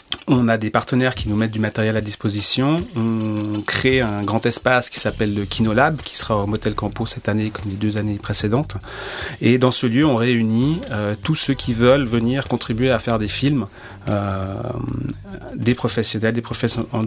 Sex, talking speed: male, 195 wpm